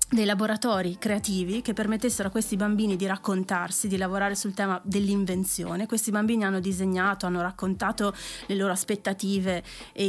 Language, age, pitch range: Italian, 30-49, 185-215 Hz